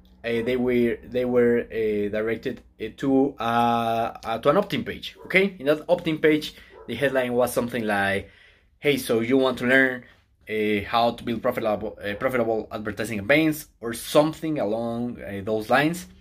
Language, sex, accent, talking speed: English, male, Mexican, 175 wpm